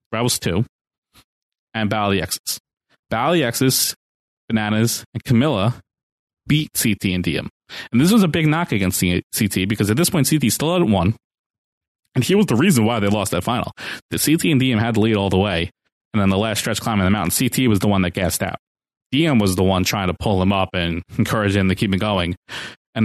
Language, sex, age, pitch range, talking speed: English, male, 20-39, 95-120 Hz, 210 wpm